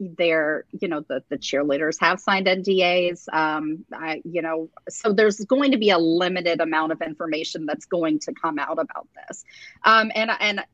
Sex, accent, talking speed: female, American, 185 wpm